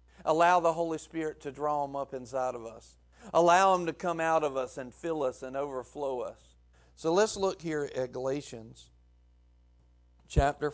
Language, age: English, 50-69